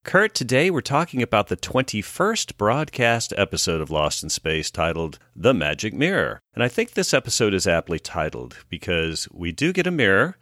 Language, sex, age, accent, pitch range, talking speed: English, male, 50-69, American, 80-120 Hz, 180 wpm